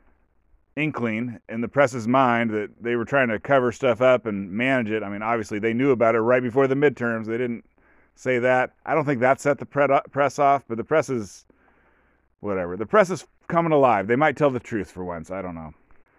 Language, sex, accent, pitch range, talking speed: English, male, American, 100-135 Hz, 220 wpm